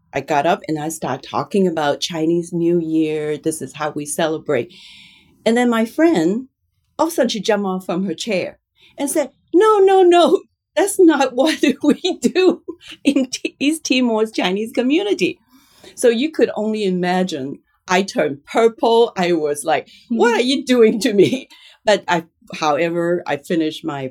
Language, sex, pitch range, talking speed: English, female, 160-245 Hz, 170 wpm